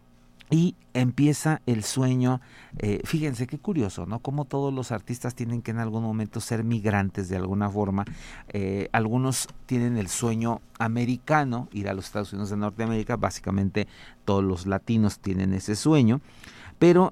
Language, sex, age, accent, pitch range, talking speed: Spanish, male, 50-69, Mexican, 105-135 Hz, 155 wpm